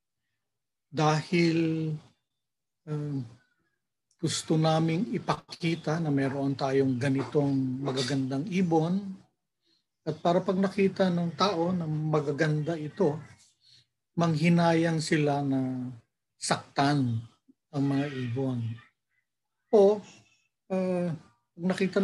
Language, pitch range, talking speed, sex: Filipino, 130-165 Hz, 85 wpm, male